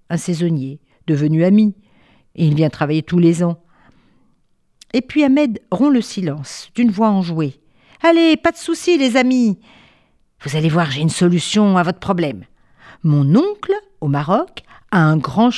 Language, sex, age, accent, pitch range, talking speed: French, female, 50-69, French, 175-245 Hz, 160 wpm